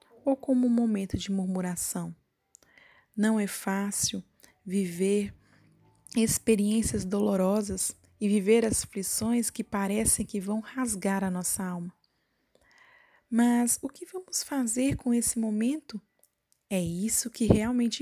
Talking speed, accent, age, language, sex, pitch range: 120 wpm, Brazilian, 20-39, Portuguese, female, 200-245 Hz